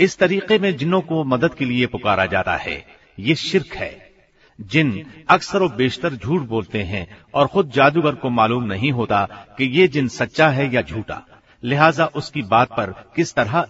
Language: Hindi